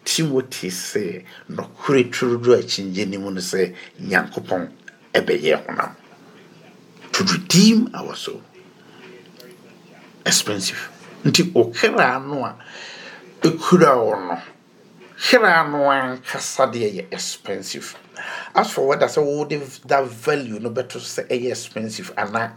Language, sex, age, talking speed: English, male, 60-79, 75 wpm